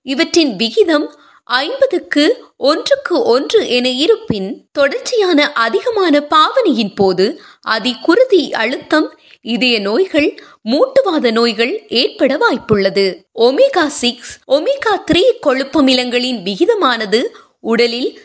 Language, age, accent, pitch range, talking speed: Tamil, 20-39, native, 230-355 Hz, 65 wpm